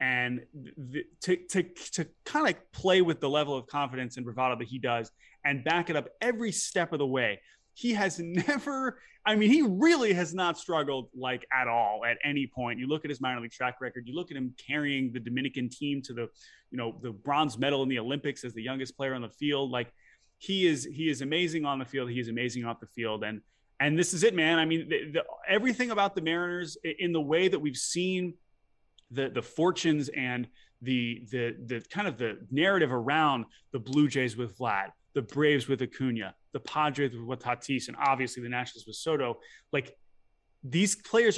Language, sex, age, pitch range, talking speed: English, male, 20-39, 125-165 Hz, 210 wpm